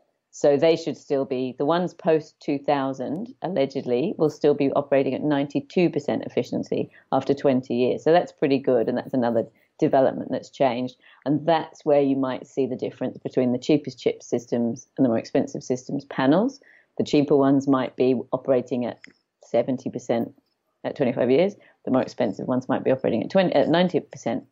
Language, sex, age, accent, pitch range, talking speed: English, female, 30-49, British, 130-155 Hz, 180 wpm